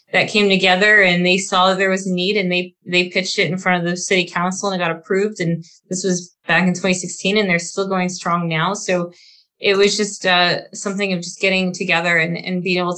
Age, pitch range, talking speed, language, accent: 20-39, 175-200 Hz, 240 wpm, English, American